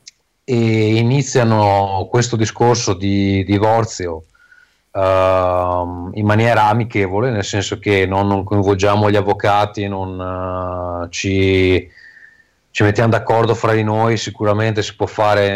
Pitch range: 100-120 Hz